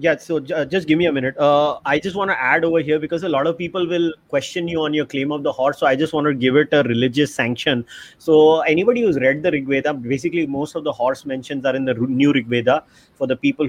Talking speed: 260 wpm